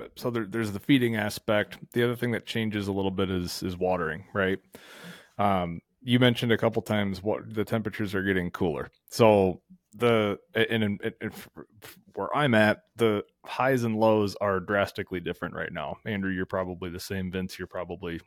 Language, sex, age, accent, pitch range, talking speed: English, male, 30-49, American, 95-110 Hz, 170 wpm